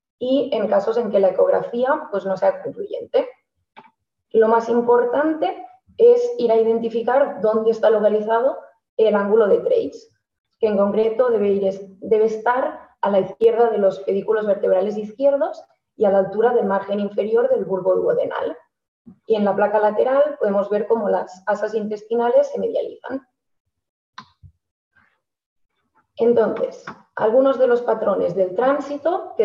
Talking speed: 140 wpm